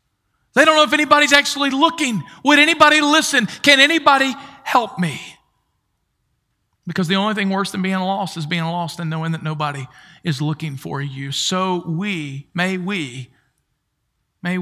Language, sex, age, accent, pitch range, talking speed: English, male, 50-69, American, 180-245 Hz, 155 wpm